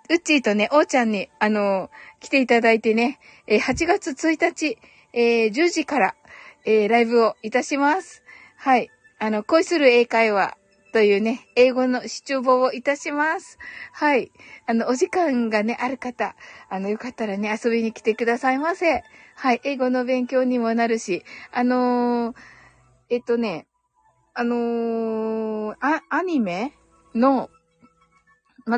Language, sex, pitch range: Japanese, female, 210-275 Hz